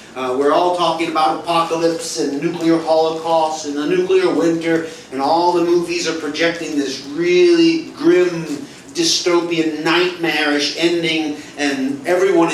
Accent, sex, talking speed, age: American, male, 130 wpm, 40-59